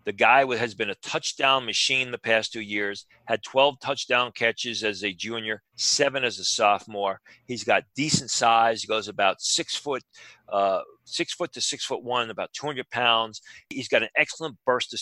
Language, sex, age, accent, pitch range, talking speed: English, male, 40-59, American, 115-140 Hz, 190 wpm